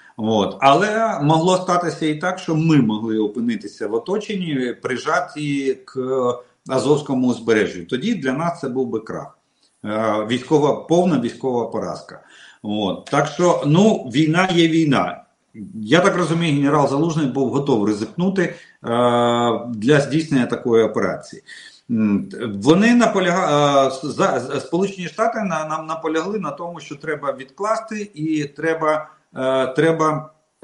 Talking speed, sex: 115 wpm, male